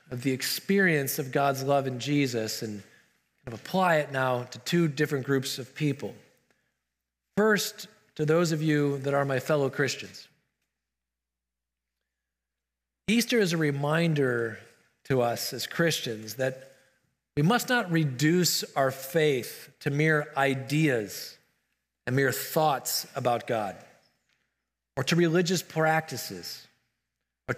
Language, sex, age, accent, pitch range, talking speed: English, male, 40-59, American, 130-170 Hz, 120 wpm